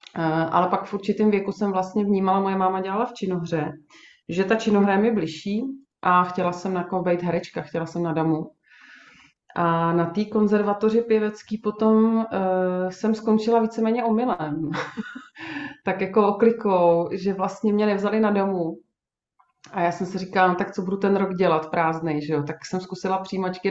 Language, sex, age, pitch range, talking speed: Czech, female, 30-49, 175-205 Hz, 170 wpm